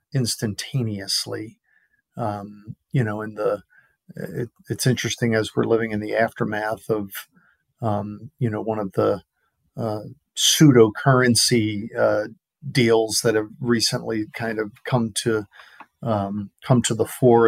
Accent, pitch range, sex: American, 110-125 Hz, male